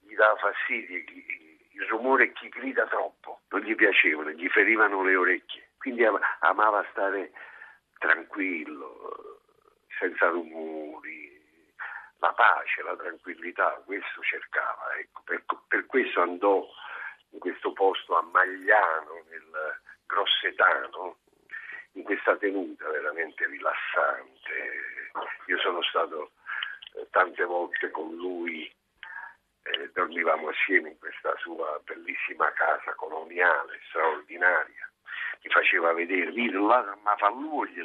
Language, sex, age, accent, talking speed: Italian, male, 50-69, native, 110 wpm